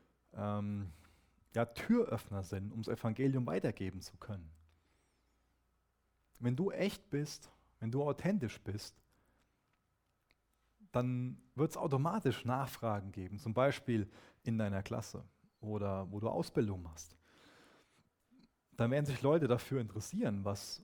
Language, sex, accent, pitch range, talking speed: German, male, German, 100-130 Hz, 110 wpm